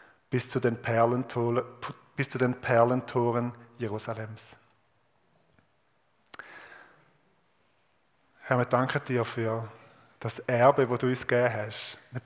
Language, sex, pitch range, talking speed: German, male, 115-125 Hz, 105 wpm